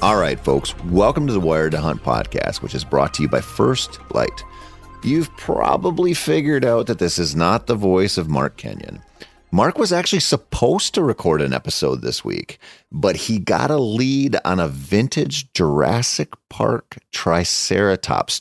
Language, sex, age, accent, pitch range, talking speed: English, male, 30-49, American, 85-125 Hz, 170 wpm